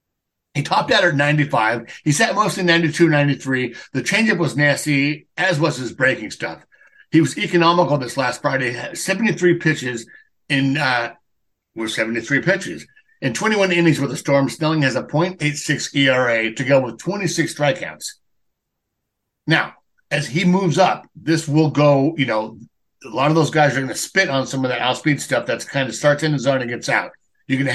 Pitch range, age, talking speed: 135-170 Hz, 60-79, 185 wpm